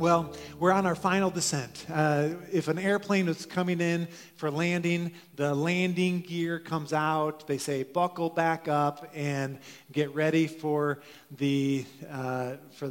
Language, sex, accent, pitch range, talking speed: English, male, American, 160-215 Hz, 135 wpm